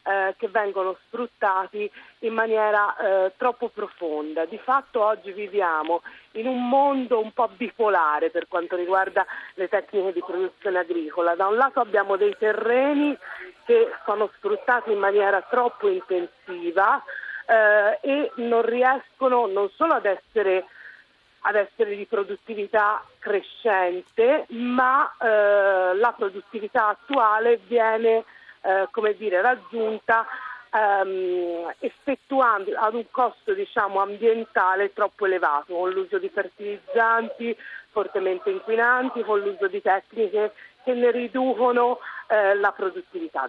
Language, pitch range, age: Italian, 195-255 Hz, 40-59